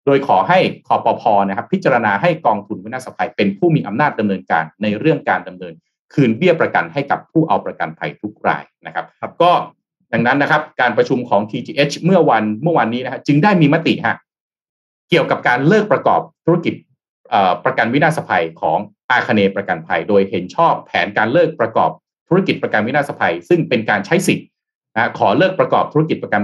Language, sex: Thai, male